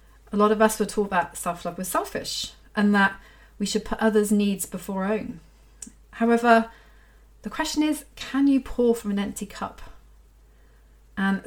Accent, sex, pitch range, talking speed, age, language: British, female, 180-230 Hz, 170 wpm, 30-49, English